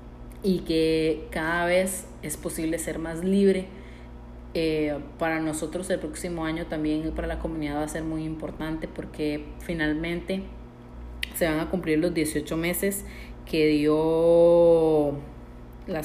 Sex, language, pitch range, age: female, Spanish, 140-165 Hz, 30-49